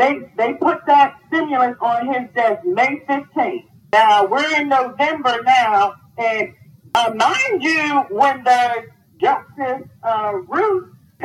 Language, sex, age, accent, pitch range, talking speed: English, male, 40-59, American, 240-365 Hz, 130 wpm